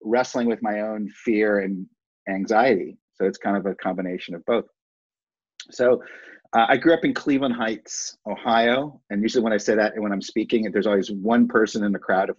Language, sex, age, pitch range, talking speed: English, male, 40-59, 100-130 Hz, 205 wpm